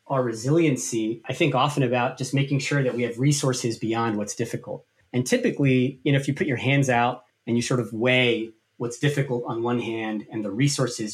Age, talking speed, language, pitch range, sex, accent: 30-49, 210 wpm, English, 115-140 Hz, male, American